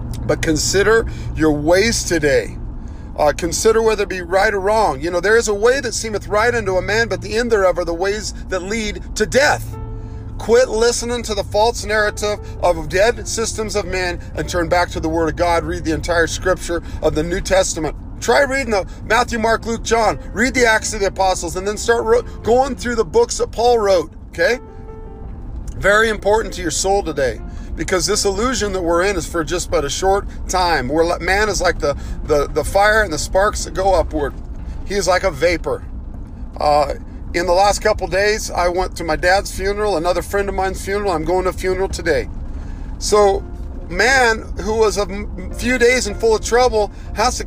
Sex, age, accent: male, 40-59, American